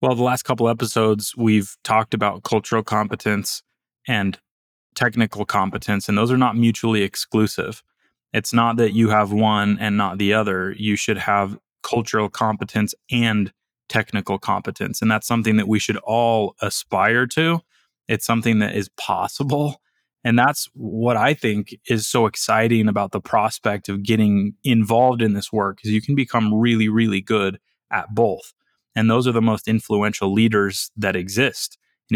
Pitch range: 105-120 Hz